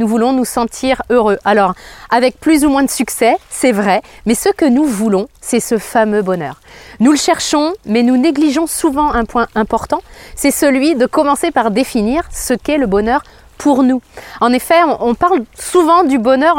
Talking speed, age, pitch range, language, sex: 190 wpm, 30-49, 220-290 Hz, French, female